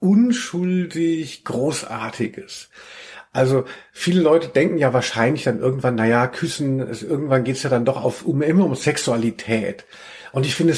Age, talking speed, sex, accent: 50-69, 145 wpm, male, German